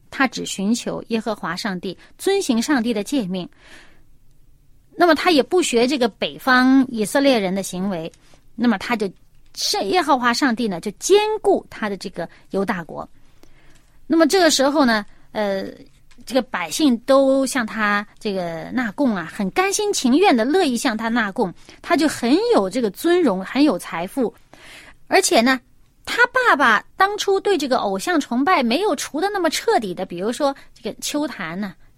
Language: Chinese